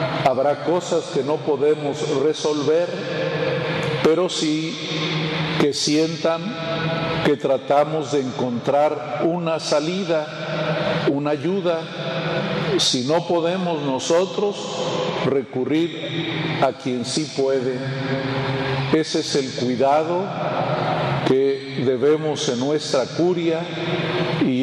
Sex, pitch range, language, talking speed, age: male, 135-160 Hz, Spanish, 90 wpm, 50-69